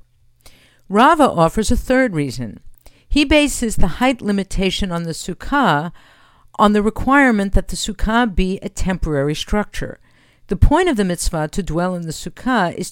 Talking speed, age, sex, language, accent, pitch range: 160 wpm, 50-69, female, English, American, 155-240 Hz